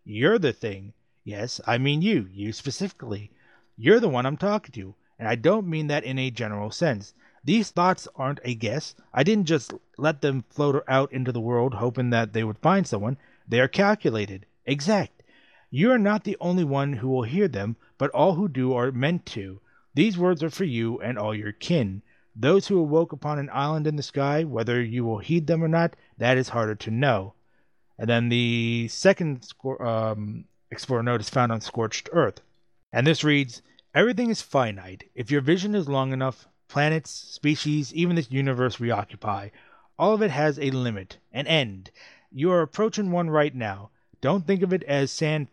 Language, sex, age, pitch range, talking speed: English, male, 30-49, 115-160 Hz, 195 wpm